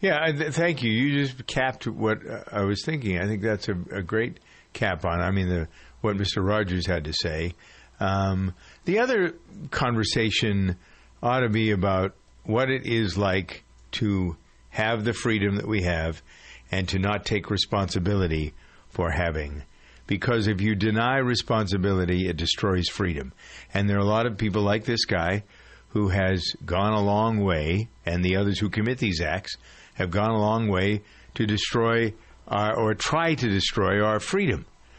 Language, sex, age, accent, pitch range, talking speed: English, male, 50-69, American, 95-115 Hz, 170 wpm